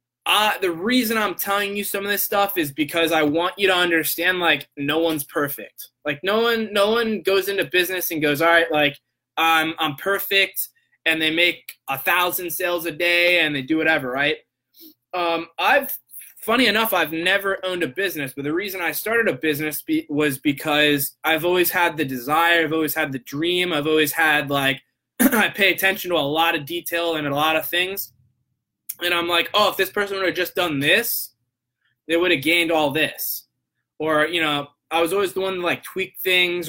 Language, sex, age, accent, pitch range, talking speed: English, male, 20-39, American, 150-185 Hz, 205 wpm